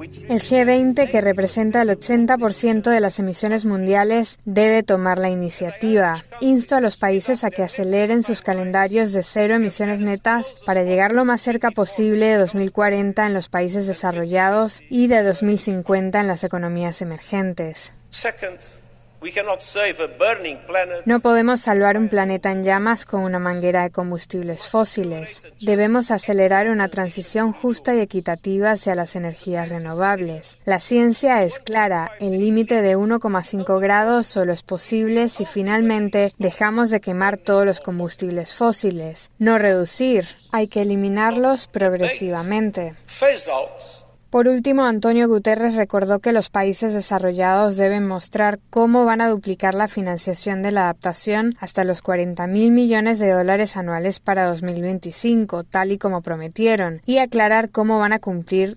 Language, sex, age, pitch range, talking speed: Spanish, female, 10-29, 185-220 Hz, 140 wpm